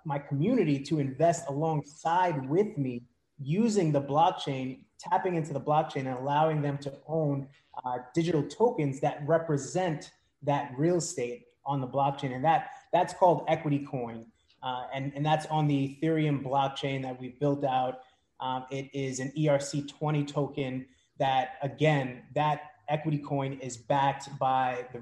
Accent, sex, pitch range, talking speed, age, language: American, male, 135-155 Hz, 155 wpm, 20-39, English